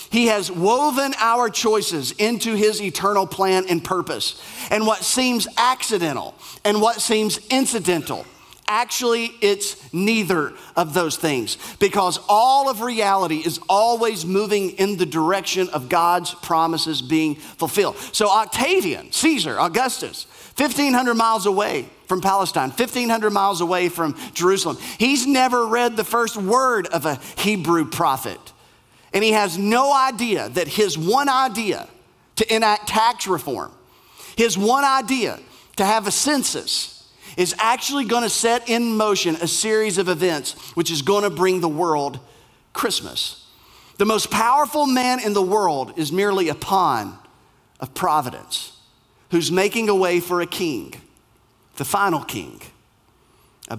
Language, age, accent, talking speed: English, 40-59, American, 140 wpm